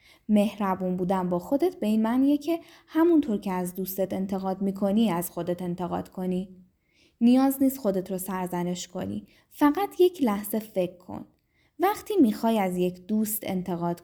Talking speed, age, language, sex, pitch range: 150 wpm, 10-29, Persian, female, 185-270 Hz